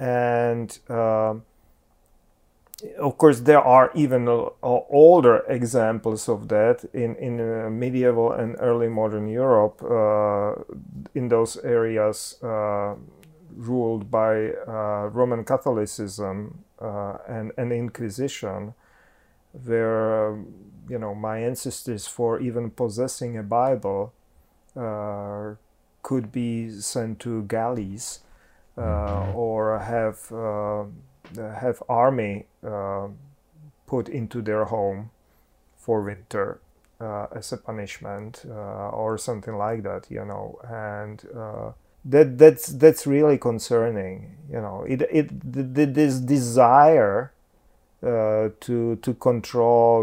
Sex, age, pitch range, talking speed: male, 40-59, 105-125 Hz, 110 wpm